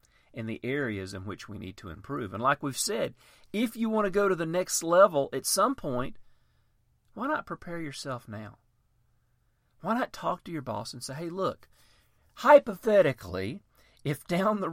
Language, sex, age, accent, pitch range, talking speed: English, male, 40-59, American, 115-155 Hz, 180 wpm